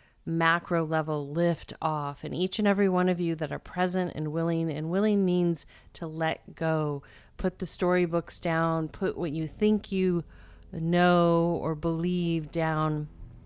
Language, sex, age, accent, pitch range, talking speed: English, female, 30-49, American, 155-180 Hz, 155 wpm